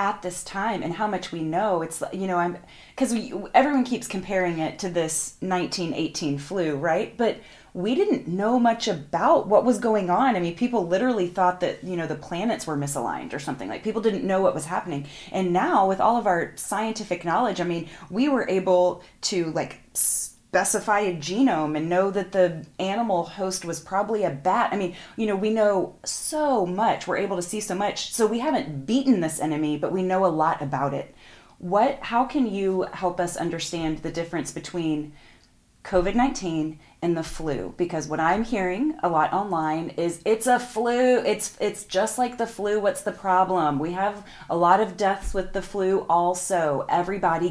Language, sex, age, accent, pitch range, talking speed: English, female, 30-49, American, 165-210 Hz, 195 wpm